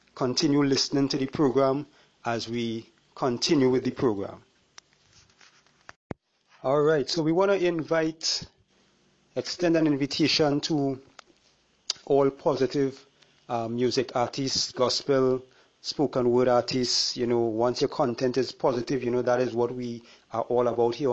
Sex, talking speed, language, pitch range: male, 135 wpm, English, 115-135 Hz